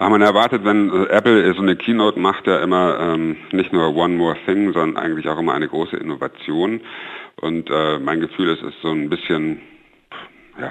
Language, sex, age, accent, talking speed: German, male, 60-79, German, 190 wpm